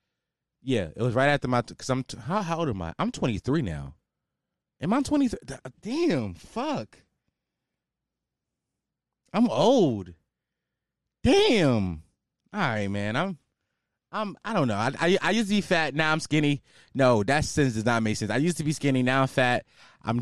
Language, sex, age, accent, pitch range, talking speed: English, male, 20-39, American, 120-180 Hz, 175 wpm